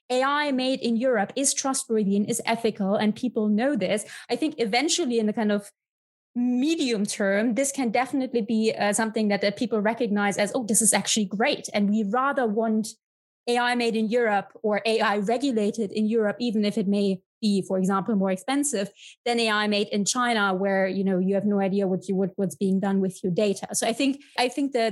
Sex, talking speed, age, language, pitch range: female, 210 wpm, 20-39, English, 210-250 Hz